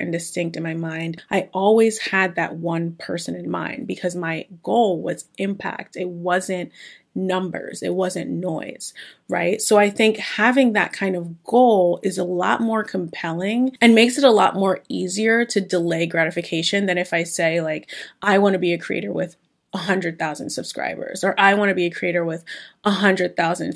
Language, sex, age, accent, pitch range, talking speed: English, female, 30-49, American, 175-220 Hz, 185 wpm